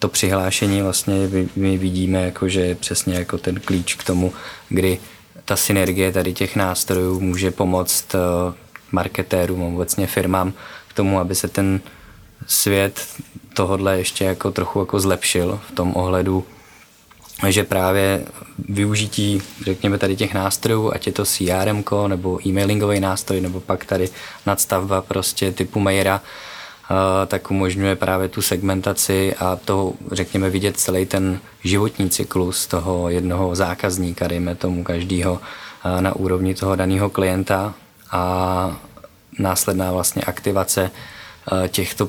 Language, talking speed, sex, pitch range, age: Czech, 130 wpm, male, 90-95 Hz, 20-39